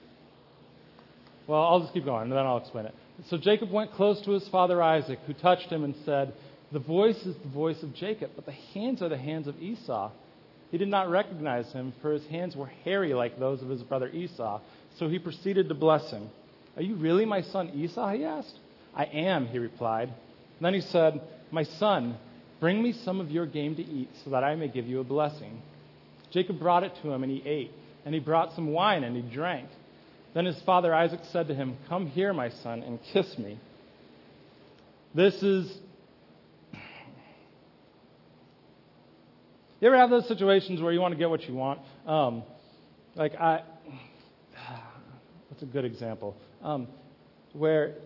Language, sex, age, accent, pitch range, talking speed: English, male, 40-59, American, 130-180 Hz, 185 wpm